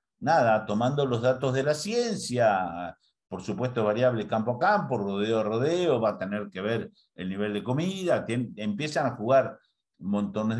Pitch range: 100-145 Hz